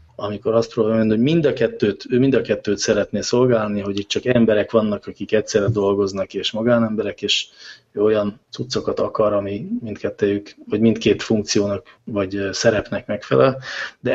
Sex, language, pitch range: male, English, 105-125 Hz